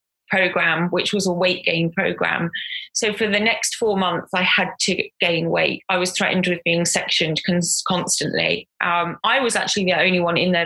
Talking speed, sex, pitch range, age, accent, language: 190 wpm, female, 180-220 Hz, 20-39, British, English